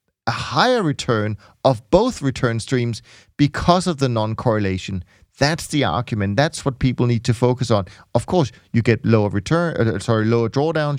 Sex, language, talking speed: male, English, 170 wpm